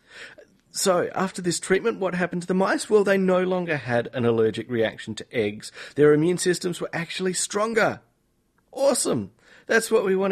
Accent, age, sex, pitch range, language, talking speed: Australian, 30-49, male, 110-160 Hz, English, 175 wpm